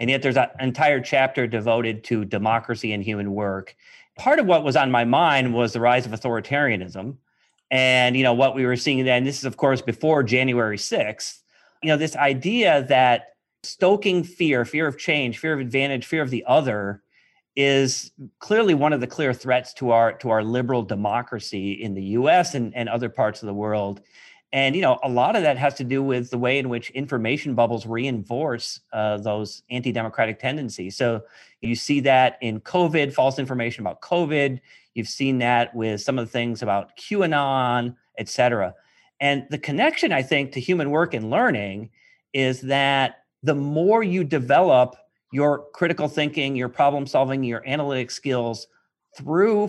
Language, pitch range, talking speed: English, 115-145 Hz, 180 wpm